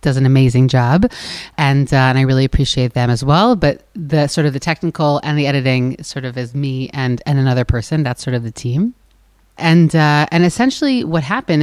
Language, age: English, 30-49